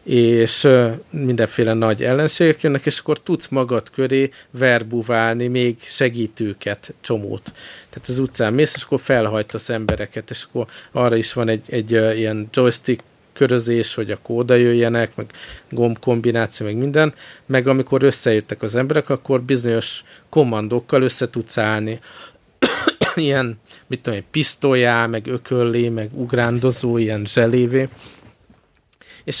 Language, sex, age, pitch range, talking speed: Hungarian, male, 50-69, 110-130 Hz, 135 wpm